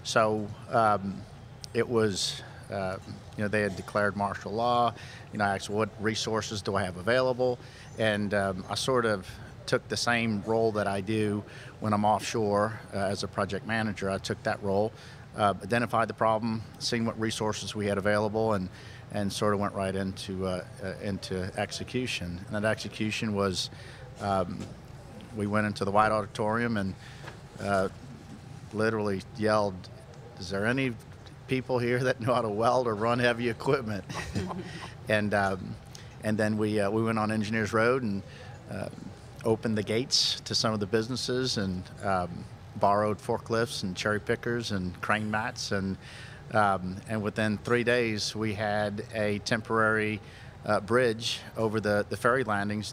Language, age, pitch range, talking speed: English, 50-69, 100-120 Hz, 165 wpm